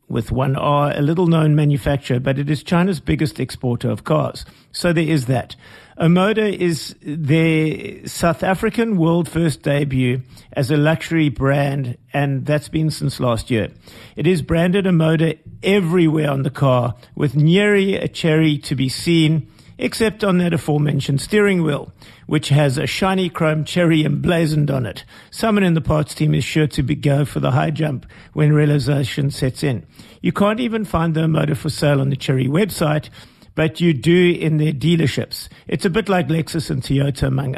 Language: English